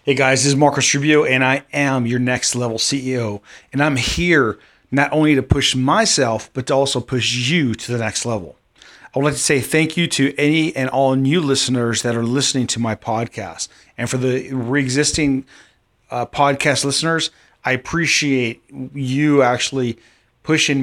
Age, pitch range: 30-49, 120-140 Hz